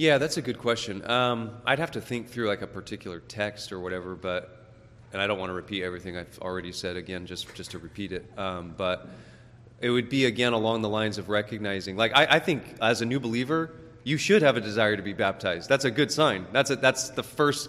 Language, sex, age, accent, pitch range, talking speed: English, male, 30-49, American, 105-125 Hz, 240 wpm